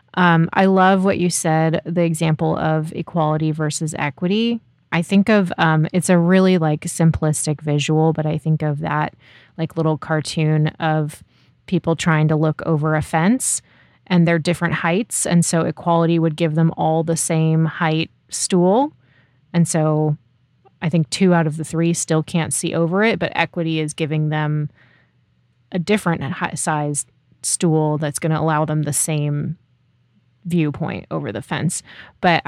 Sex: female